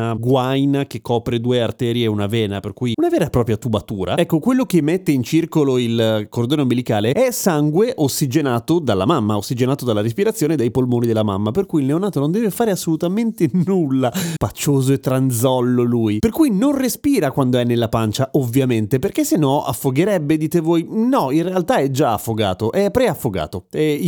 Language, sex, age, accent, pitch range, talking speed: Italian, male, 30-49, native, 120-185 Hz, 180 wpm